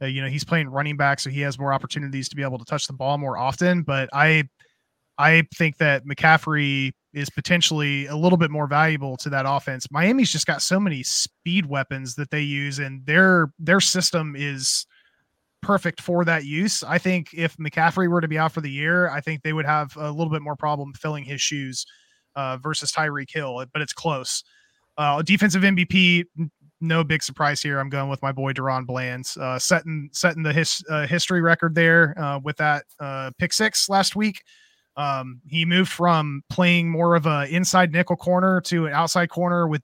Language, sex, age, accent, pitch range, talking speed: English, male, 20-39, American, 140-170 Hz, 195 wpm